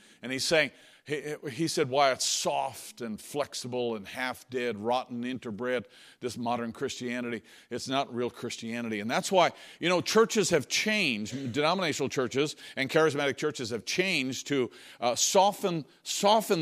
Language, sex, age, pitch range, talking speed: English, male, 50-69, 130-185 Hz, 145 wpm